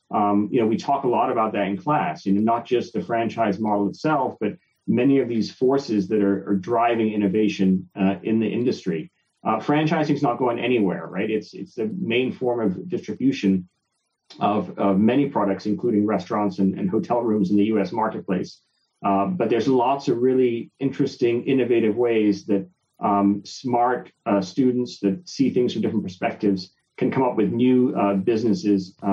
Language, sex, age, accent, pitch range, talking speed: English, male, 40-59, American, 100-120 Hz, 180 wpm